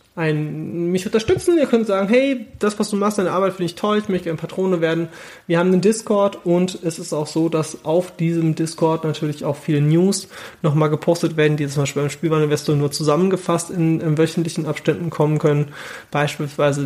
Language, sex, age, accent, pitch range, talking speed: German, male, 30-49, German, 150-180 Hz, 195 wpm